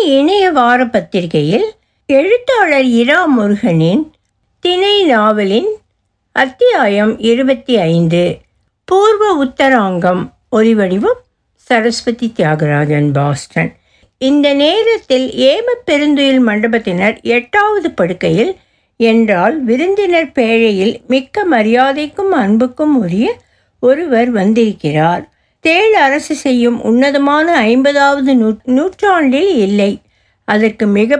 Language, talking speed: Tamil, 85 wpm